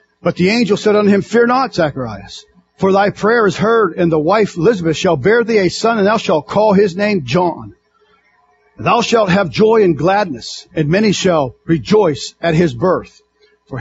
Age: 50-69